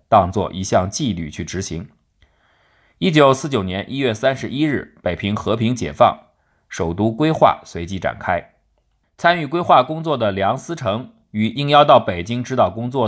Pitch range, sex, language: 95-135 Hz, male, Chinese